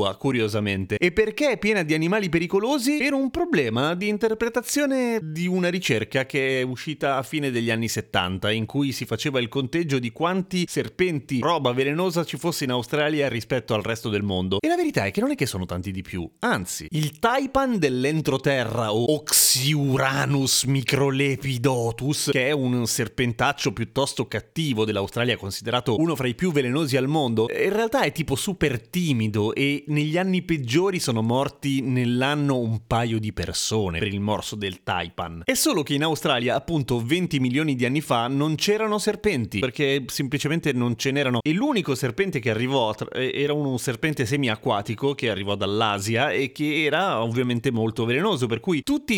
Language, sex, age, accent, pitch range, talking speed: Italian, male, 30-49, native, 115-160 Hz, 170 wpm